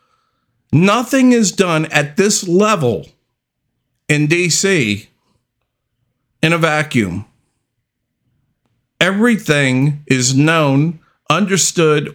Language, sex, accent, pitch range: English, male, American, 125-180 Hz